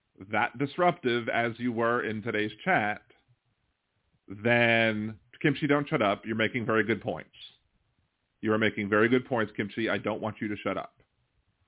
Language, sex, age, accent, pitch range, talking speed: English, male, 40-59, American, 105-125 Hz, 165 wpm